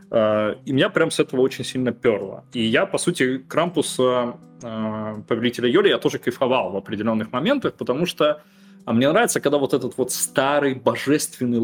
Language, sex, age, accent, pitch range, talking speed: Russian, male, 20-39, native, 115-155 Hz, 160 wpm